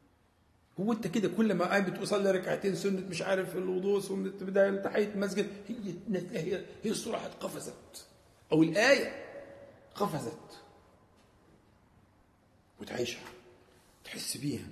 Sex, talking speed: male, 100 wpm